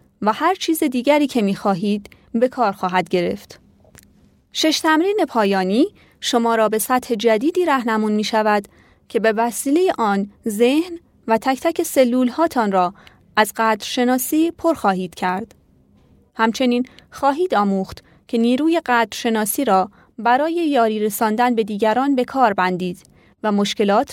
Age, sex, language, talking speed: 30-49, female, Persian, 135 wpm